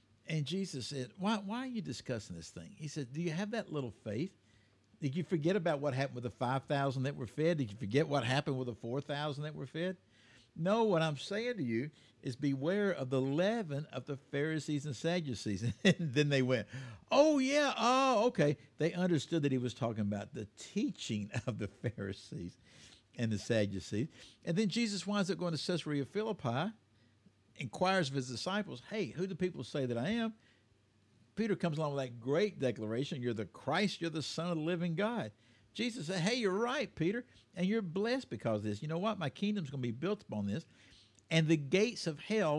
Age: 60-79